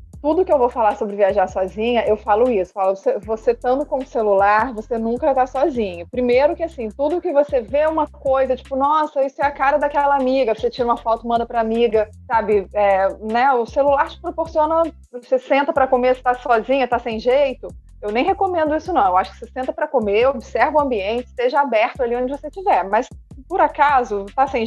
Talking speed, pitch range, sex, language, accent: 215 wpm, 225-295 Hz, female, Portuguese, Brazilian